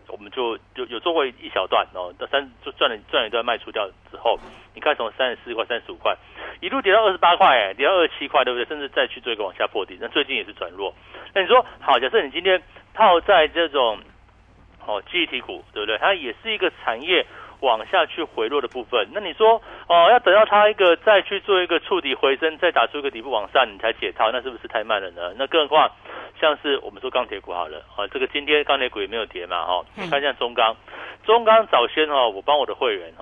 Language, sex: Chinese, male